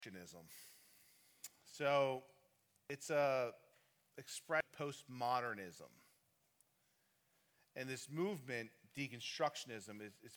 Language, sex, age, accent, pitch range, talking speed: English, male, 30-49, American, 115-140 Hz, 65 wpm